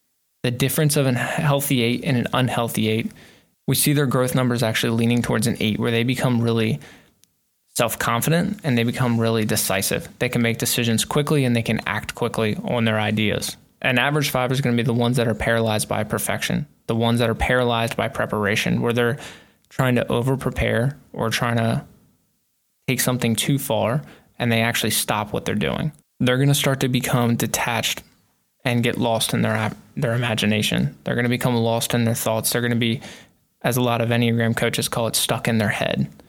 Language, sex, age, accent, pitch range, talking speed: English, male, 20-39, American, 115-130 Hz, 195 wpm